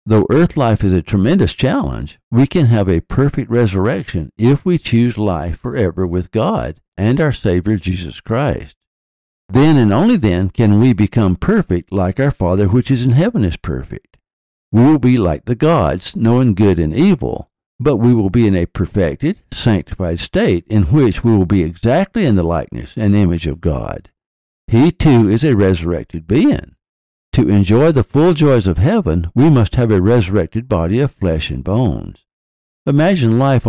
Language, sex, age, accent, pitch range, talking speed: English, male, 60-79, American, 90-125 Hz, 175 wpm